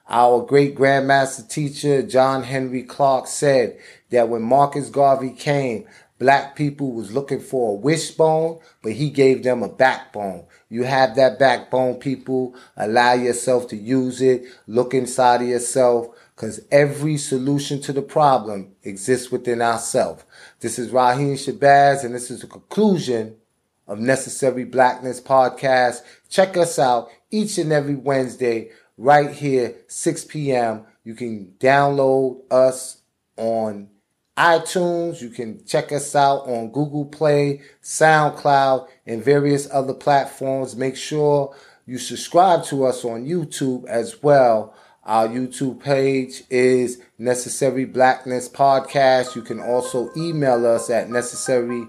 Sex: male